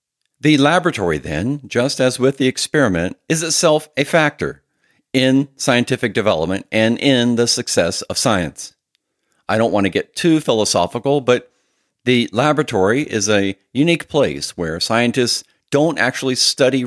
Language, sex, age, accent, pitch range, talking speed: English, male, 50-69, American, 115-145 Hz, 140 wpm